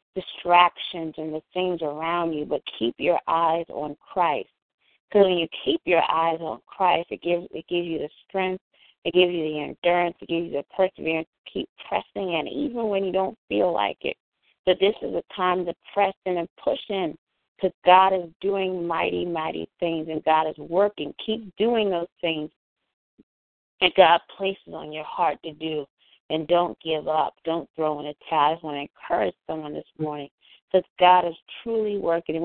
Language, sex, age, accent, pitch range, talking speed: English, female, 30-49, American, 160-185 Hz, 190 wpm